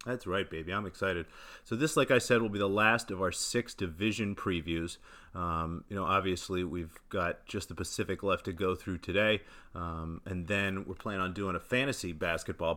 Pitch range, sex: 85-100 Hz, male